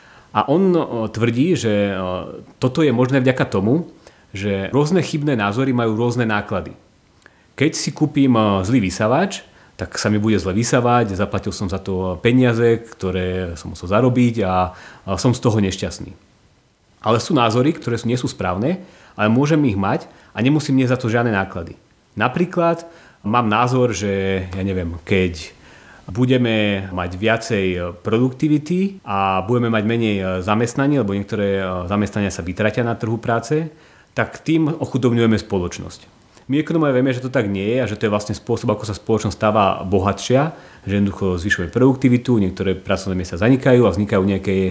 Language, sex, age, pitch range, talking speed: Slovak, male, 30-49, 95-130 Hz, 155 wpm